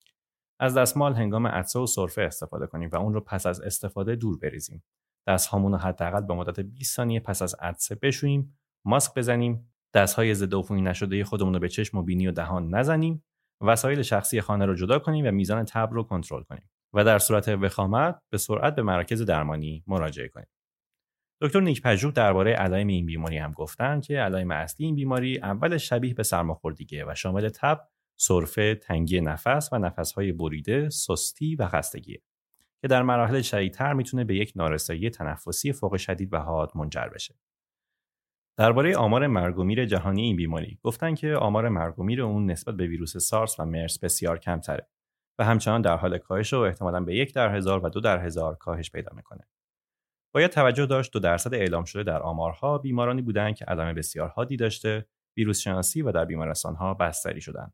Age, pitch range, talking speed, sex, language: 30-49, 90-120 Hz, 175 wpm, male, Persian